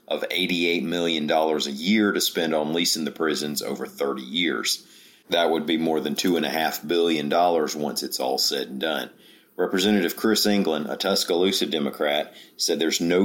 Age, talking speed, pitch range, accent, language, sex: 40-59, 165 wpm, 75-95 Hz, American, English, male